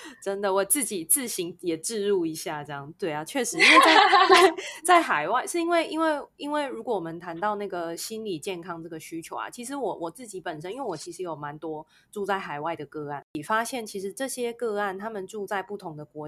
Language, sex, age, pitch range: Chinese, female, 20-39, 165-225 Hz